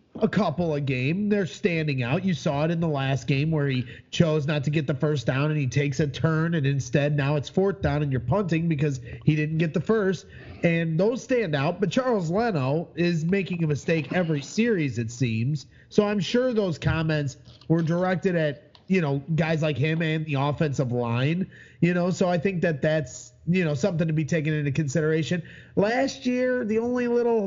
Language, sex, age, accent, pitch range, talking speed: English, male, 30-49, American, 130-180 Hz, 210 wpm